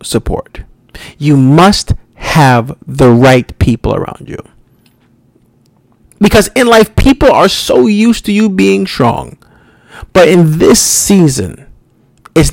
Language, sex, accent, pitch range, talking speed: English, male, American, 125-185 Hz, 120 wpm